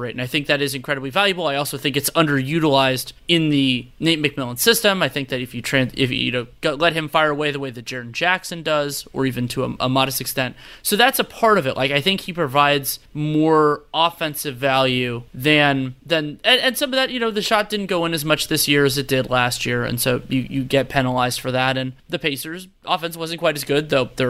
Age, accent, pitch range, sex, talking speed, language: 20-39, American, 135-170 Hz, male, 240 wpm, English